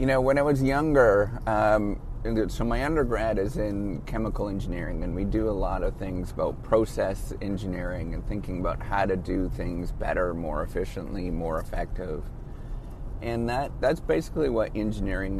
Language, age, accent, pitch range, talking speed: English, 30-49, American, 95-115 Hz, 165 wpm